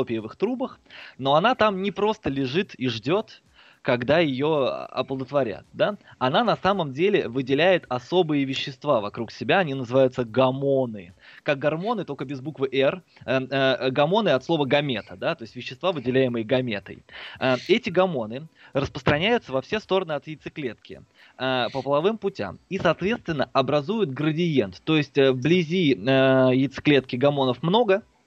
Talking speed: 140 wpm